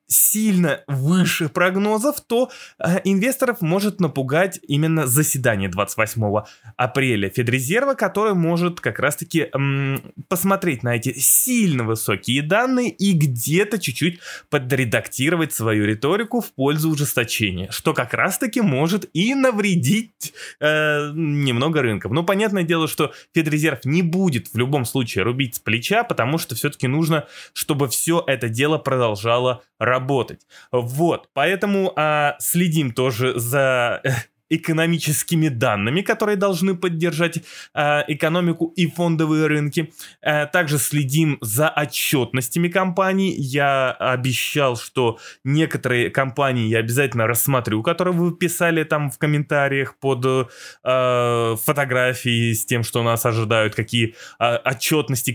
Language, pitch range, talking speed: Russian, 120-170 Hz, 125 wpm